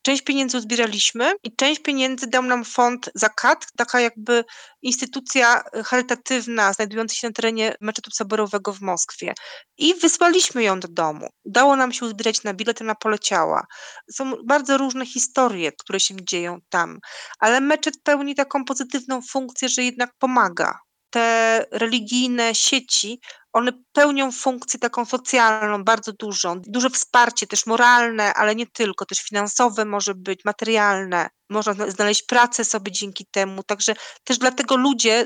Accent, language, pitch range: native, Polish, 210-255 Hz